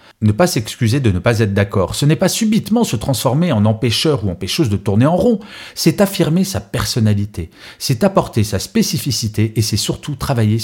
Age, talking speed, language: 40-59, 190 wpm, French